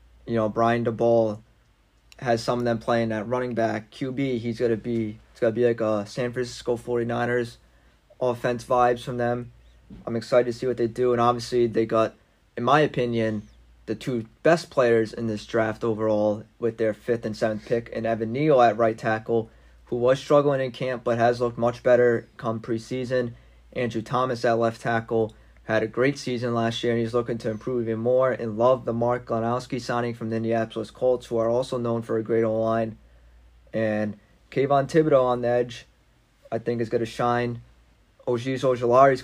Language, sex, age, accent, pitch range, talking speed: English, male, 20-39, American, 110-125 Hz, 190 wpm